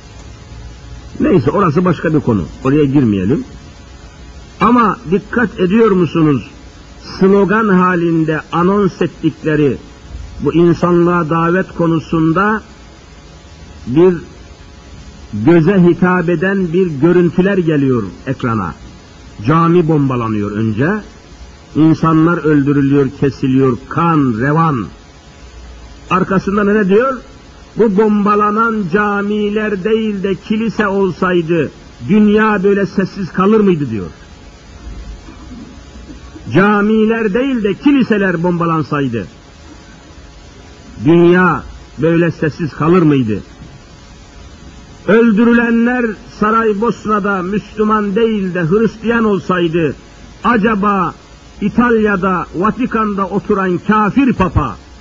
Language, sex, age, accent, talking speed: Turkish, male, 60-79, native, 80 wpm